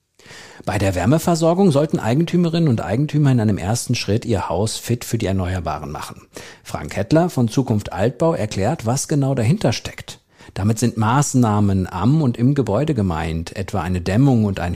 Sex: male